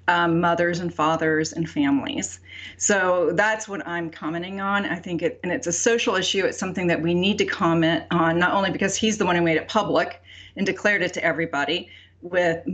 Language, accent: English, American